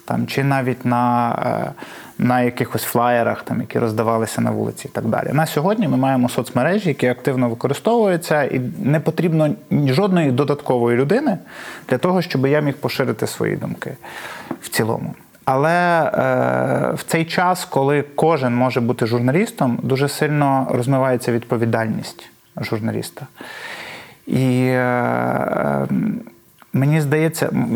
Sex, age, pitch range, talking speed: male, 30-49, 125-155 Hz, 125 wpm